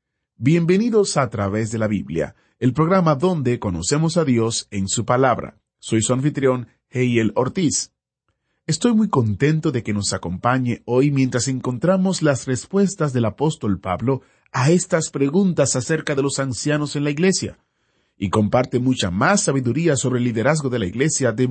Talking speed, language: 160 wpm, Spanish